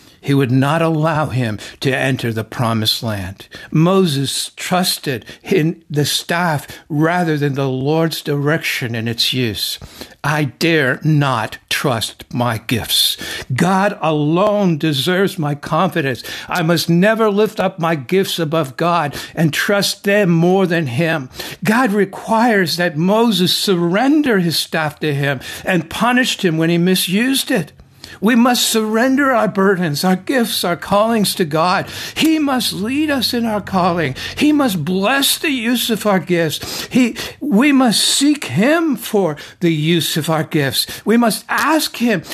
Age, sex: 60-79, male